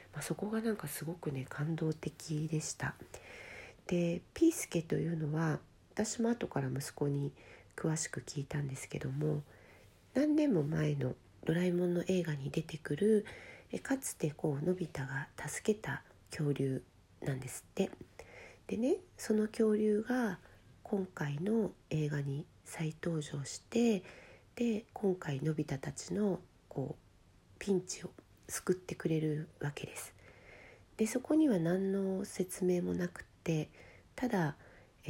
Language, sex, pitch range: Japanese, female, 145-190 Hz